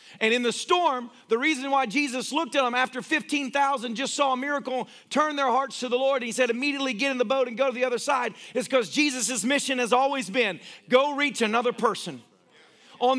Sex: male